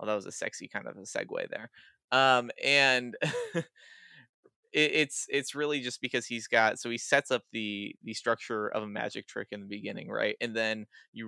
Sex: male